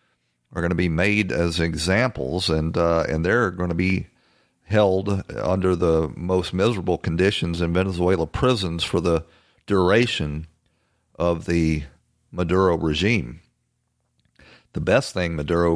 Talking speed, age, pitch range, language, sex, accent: 130 wpm, 50-69, 80-100 Hz, English, male, American